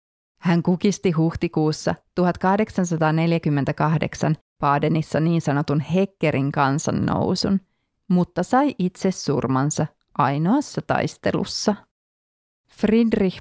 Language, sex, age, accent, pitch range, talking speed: Finnish, female, 30-49, native, 150-180 Hz, 70 wpm